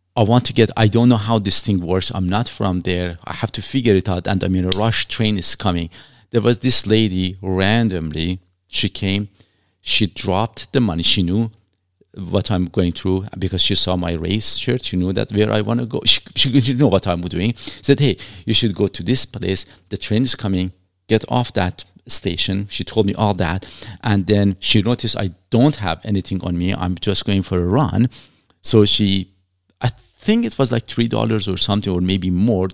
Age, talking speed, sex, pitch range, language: 50-69, 215 wpm, male, 95-125 Hz, English